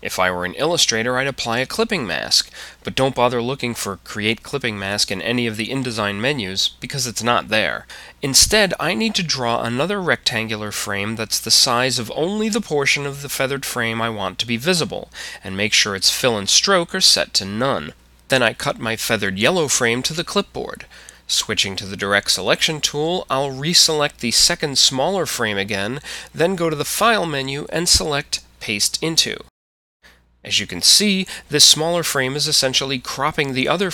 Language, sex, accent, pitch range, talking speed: English, male, American, 105-150 Hz, 190 wpm